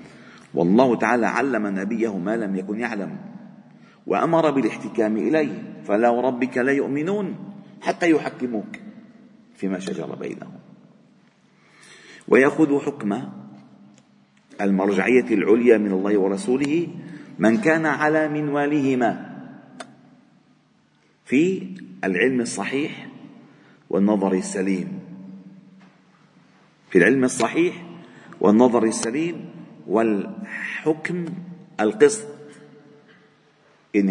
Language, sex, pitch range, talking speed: Arabic, male, 115-185 Hz, 75 wpm